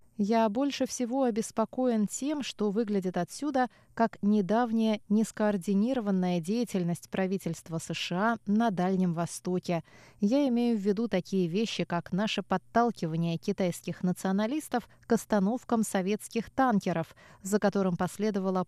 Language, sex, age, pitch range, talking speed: Russian, female, 20-39, 175-230 Hz, 110 wpm